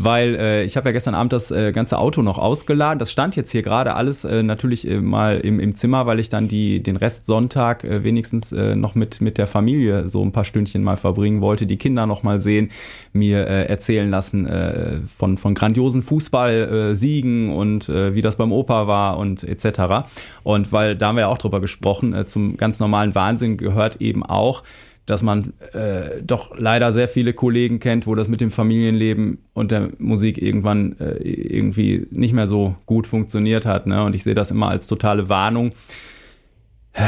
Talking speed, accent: 200 wpm, German